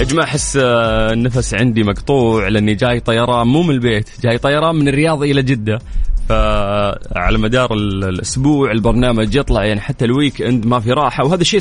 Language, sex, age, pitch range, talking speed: Arabic, male, 20-39, 105-130 Hz, 155 wpm